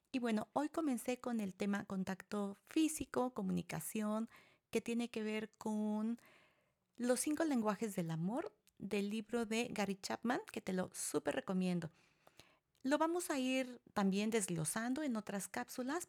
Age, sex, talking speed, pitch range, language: 40-59, female, 145 wpm, 190-255 Hz, Spanish